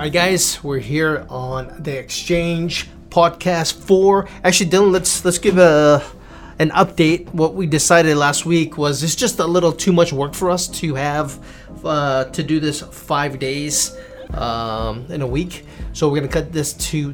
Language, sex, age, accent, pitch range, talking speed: English, male, 30-49, American, 130-155 Hz, 180 wpm